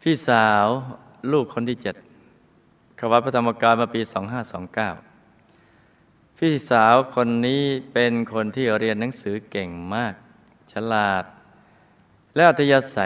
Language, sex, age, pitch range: Thai, male, 20-39, 100-125 Hz